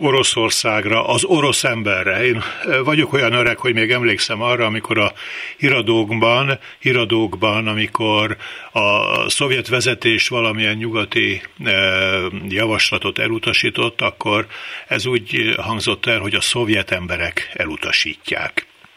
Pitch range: 115-140 Hz